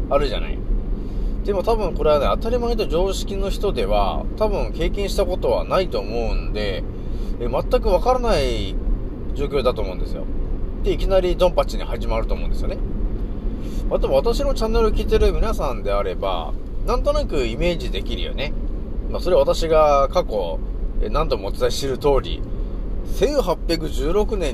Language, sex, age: Japanese, male, 30-49